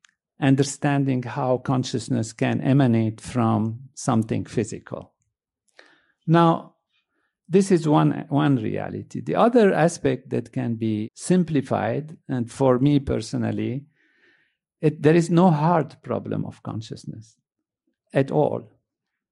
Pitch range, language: 125-160 Hz, English